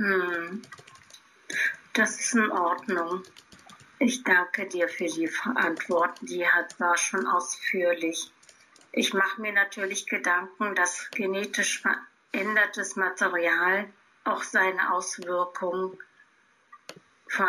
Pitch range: 180-210 Hz